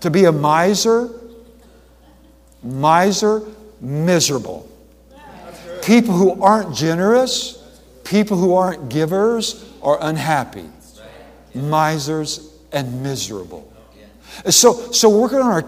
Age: 60-79